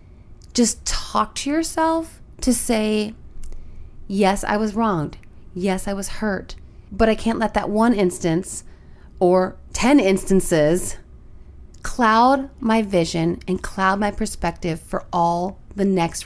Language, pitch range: English, 180-230 Hz